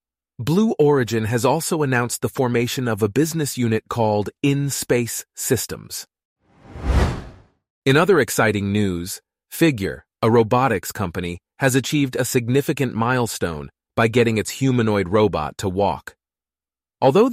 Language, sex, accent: English, male, American